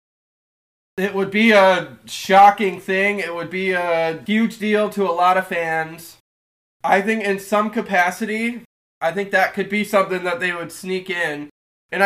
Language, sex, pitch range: English, male, 165-200 Hz